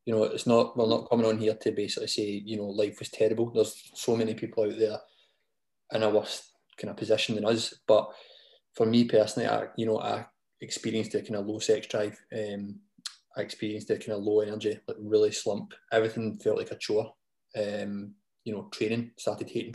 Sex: male